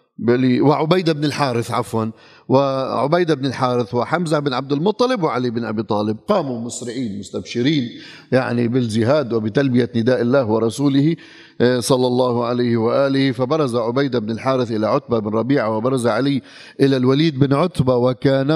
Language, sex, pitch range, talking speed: Arabic, male, 125-170 Hz, 140 wpm